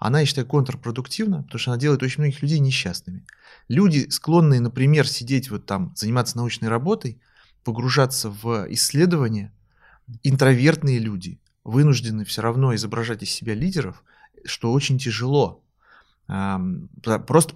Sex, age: male, 30-49